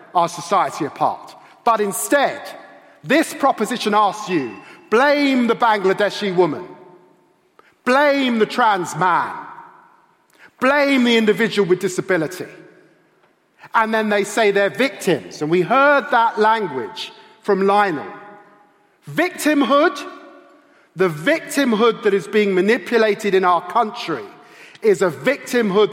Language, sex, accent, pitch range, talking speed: English, male, British, 185-250 Hz, 110 wpm